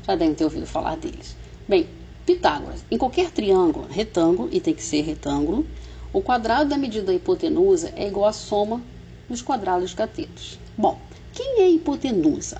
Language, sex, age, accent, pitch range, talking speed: Portuguese, female, 50-69, Brazilian, 215-350 Hz, 170 wpm